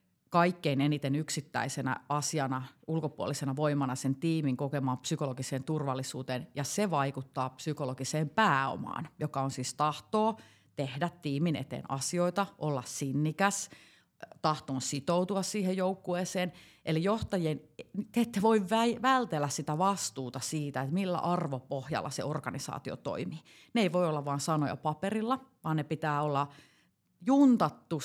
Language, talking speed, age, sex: Finnish, 120 wpm, 30-49, female